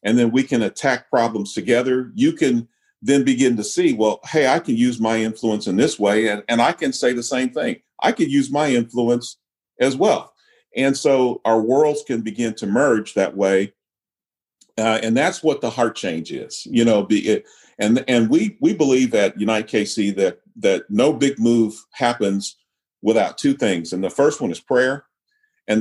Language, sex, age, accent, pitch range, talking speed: English, male, 50-69, American, 105-135 Hz, 195 wpm